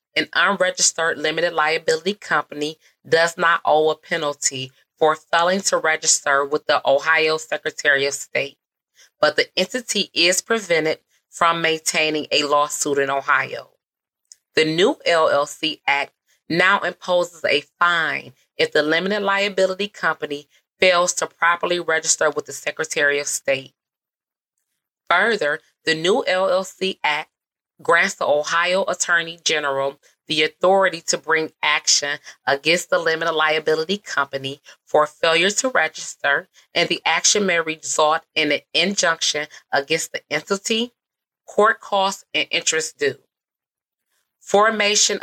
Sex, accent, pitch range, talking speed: female, American, 150-185 Hz, 125 wpm